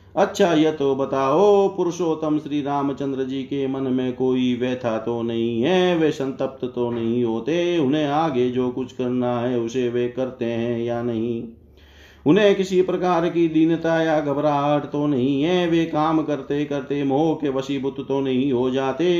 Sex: male